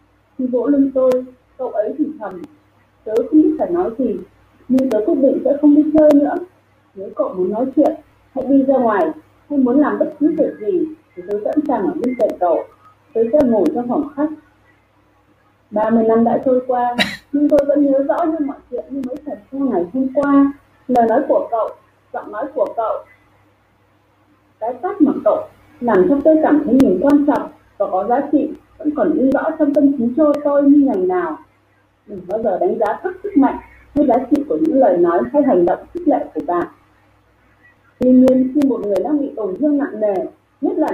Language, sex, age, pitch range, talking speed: Vietnamese, female, 30-49, 230-305 Hz, 210 wpm